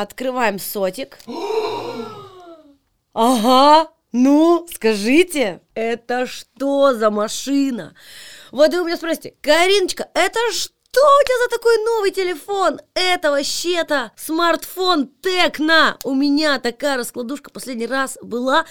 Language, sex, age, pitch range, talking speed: Russian, female, 20-39, 225-310 Hz, 110 wpm